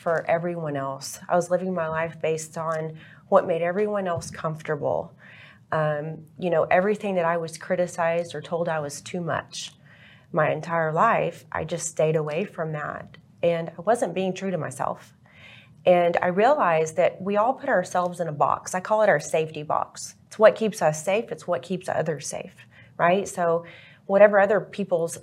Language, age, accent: English, 30-49, American